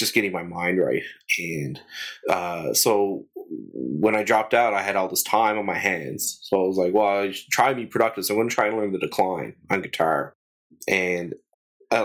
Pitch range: 95-115 Hz